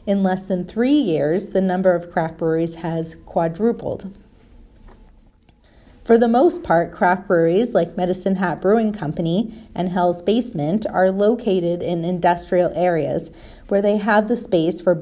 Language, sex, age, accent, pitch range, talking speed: English, female, 30-49, American, 170-210 Hz, 150 wpm